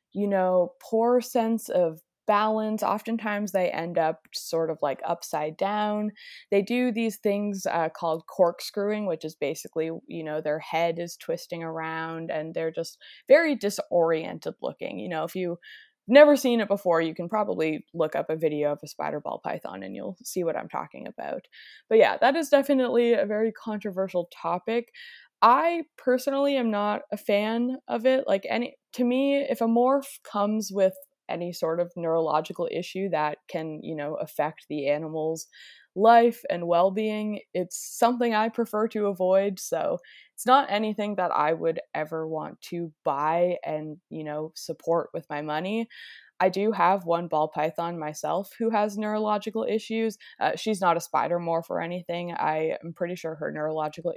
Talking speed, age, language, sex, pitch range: 170 wpm, 20-39, English, female, 165-225 Hz